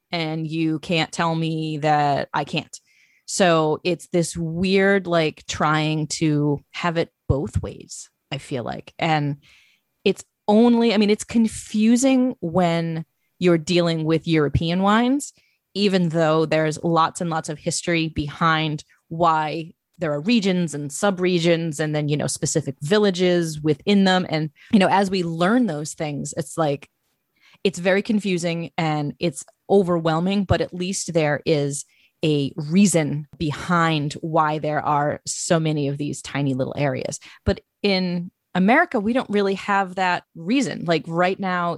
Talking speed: 150 wpm